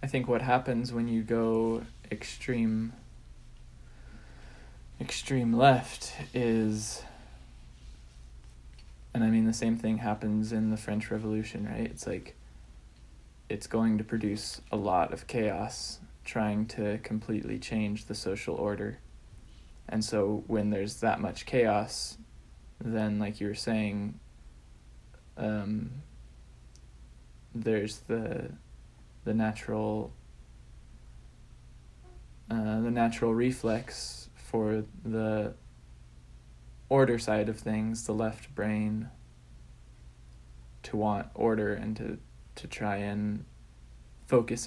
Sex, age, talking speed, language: male, 20-39, 105 wpm, English